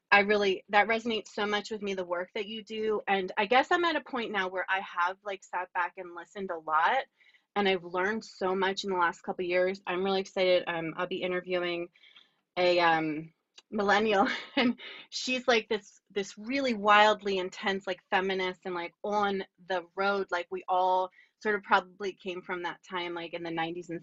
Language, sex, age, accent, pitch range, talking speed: English, female, 20-39, American, 180-210 Hz, 205 wpm